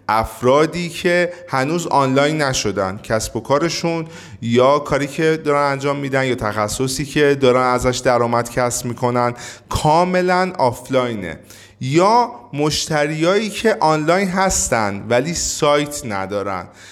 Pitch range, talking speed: 110-160 Hz, 115 wpm